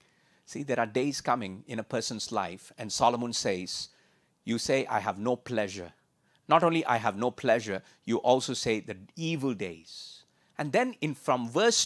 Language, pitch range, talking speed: English, 125-185 Hz, 170 wpm